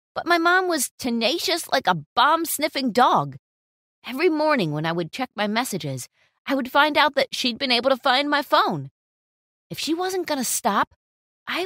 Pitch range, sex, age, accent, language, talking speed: 180-290 Hz, female, 30-49, American, English, 180 wpm